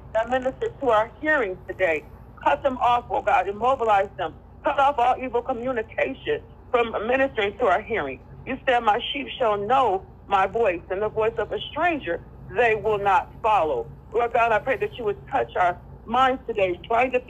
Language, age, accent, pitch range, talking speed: English, 50-69, American, 220-285 Hz, 185 wpm